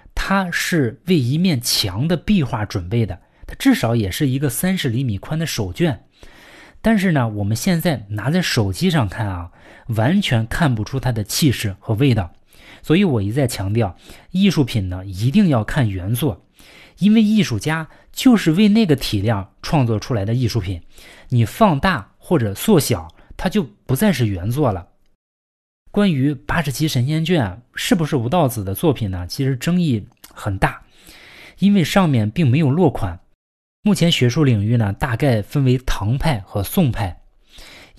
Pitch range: 105-160 Hz